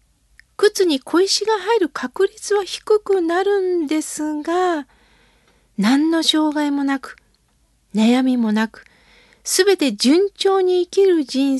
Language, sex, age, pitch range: Japanese, female, 40-59, 250-340 Hz